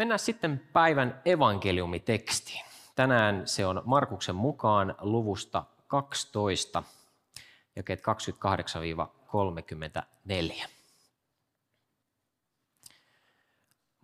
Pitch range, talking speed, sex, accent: 90-120 Hz, 55 wpm, male, native